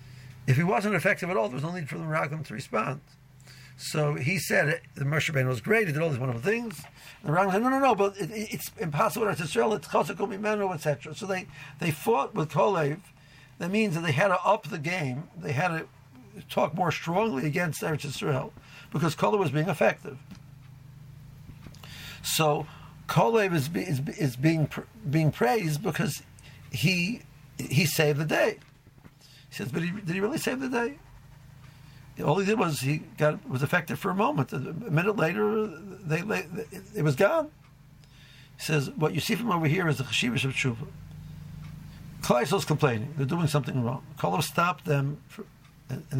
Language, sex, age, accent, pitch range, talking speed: English, male, 60-79, American, 140-185 Hz, 175 wpm